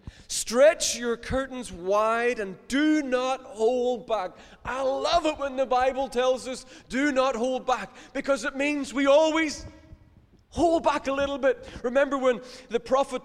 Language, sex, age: English, male, 20-39